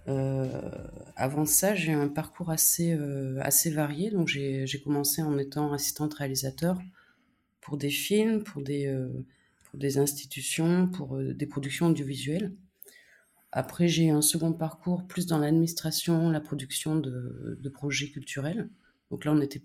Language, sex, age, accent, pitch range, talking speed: French, female, 30-49, French, 135-165 Hz, 160 wpm